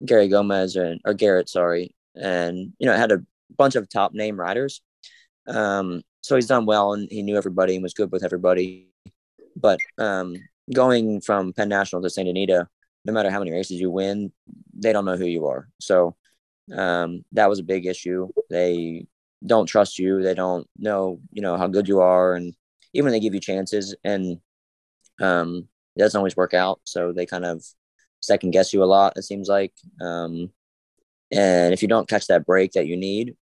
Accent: American